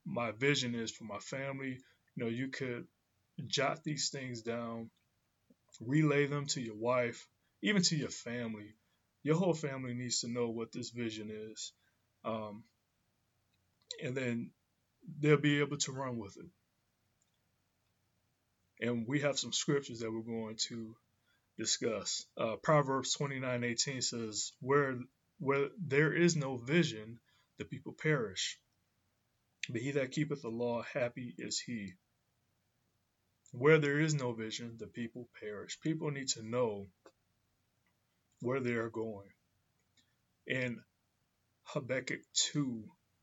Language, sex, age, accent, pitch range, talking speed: English, male, 20-39, American, 110-140 Hz, 130 wpm